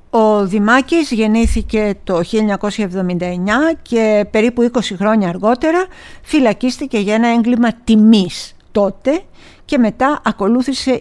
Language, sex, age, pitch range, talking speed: Greek, female, 50-69, 185-240 Hz, 105 wpm